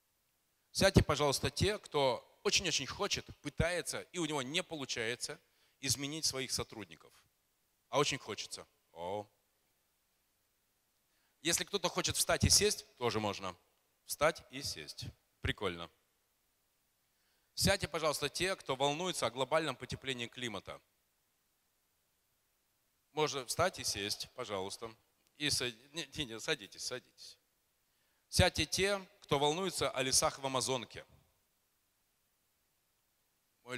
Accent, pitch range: native, 110-155 Hz